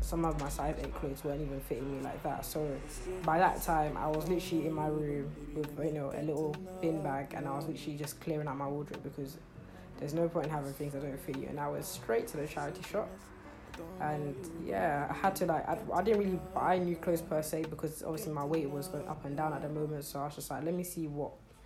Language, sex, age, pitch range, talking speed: English, female, 20-39, 145-170 Hz, 260 wpm